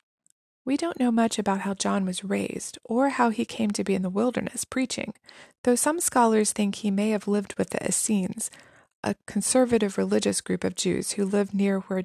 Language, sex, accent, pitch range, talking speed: English, female, American, 200-255 Hz, 200 wpm